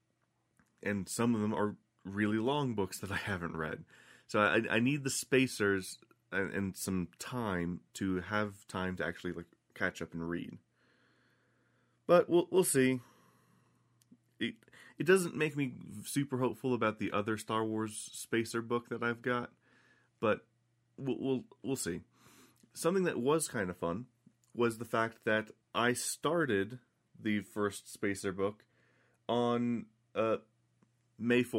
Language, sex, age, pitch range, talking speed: English, male, 30-49, 100-125 Hz, 145 wpm